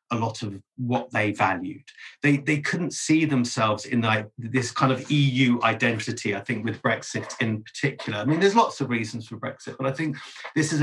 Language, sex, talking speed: English, male, 205 wpm